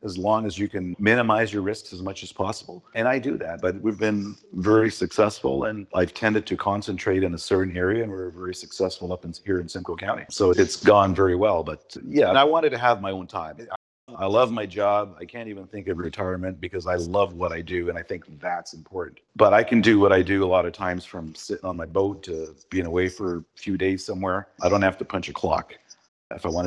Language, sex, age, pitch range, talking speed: English, male, 40-59, 90-100 Hz, 245 wpm